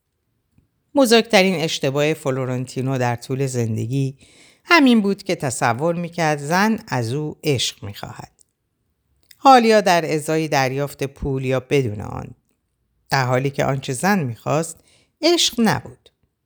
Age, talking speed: 50-69, 115 wpm